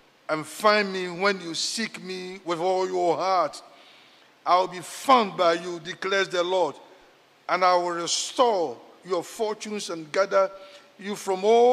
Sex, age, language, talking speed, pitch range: male, 50-69, English, 160 wpm, 170-210 Hz